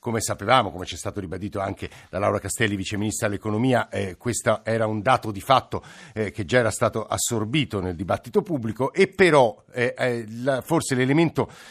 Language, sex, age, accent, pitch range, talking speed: Italian, male, 50-69, native, 110-145 Hz, 190 wpm